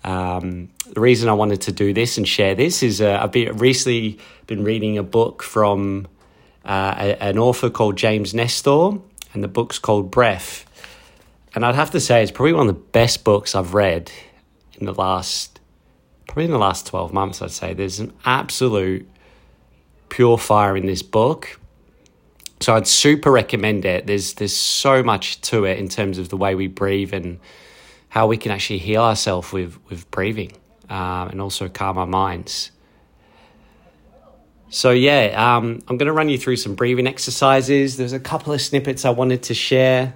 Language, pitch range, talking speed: English, 100-125 Hz, 180 wpm